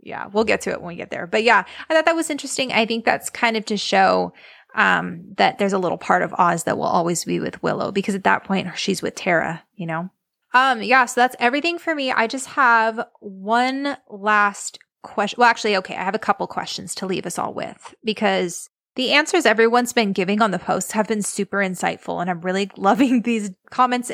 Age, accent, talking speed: 20-39, American, 225 wpm